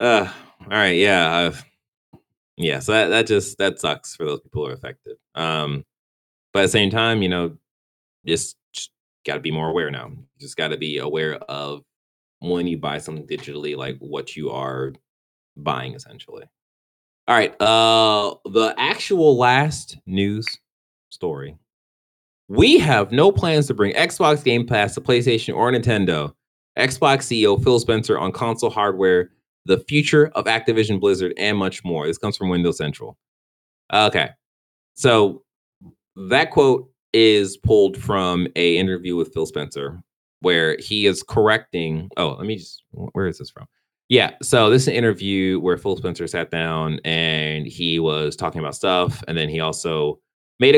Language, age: English, 20-39